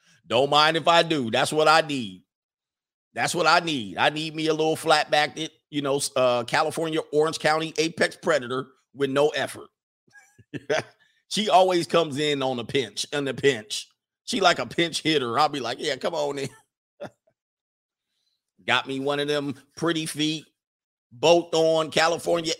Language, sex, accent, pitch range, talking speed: English, male, American, 135-170 Hz, 165 wpm